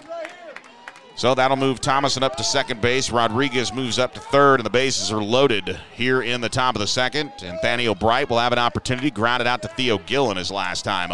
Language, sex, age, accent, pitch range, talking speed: English, male, 30-49, American, 105-130 Hz, 215 wpm